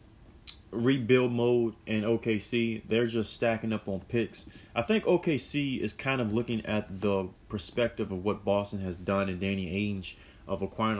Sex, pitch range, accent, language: male, 95-120 Hz, American, English